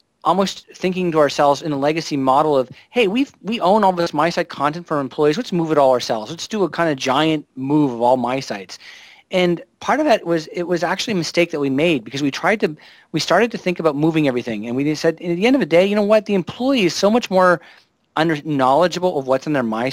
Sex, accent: male, American